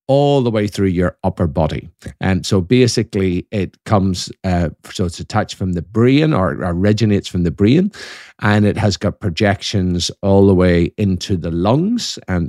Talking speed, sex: 175 wpm, male